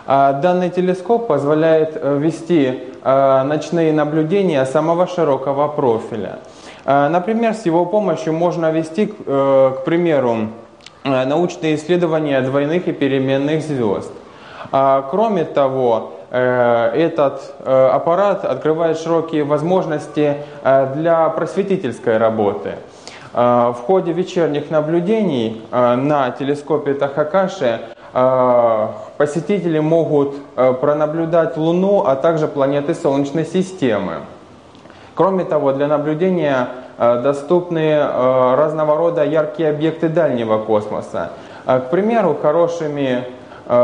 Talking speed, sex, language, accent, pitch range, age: 85 wpm, male, Russian, native, 130-165 Hz, 20-39